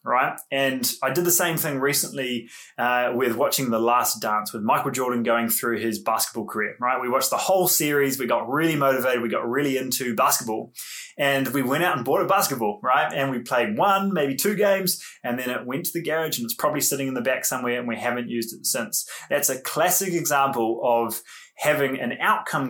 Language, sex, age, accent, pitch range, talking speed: English, male, 20-39, Australian, 120-150 Hz, 215 wpm